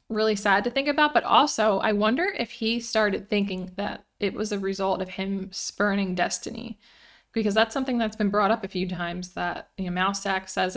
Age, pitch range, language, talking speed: 20-39, 185-210 Hz, English, 205 wpm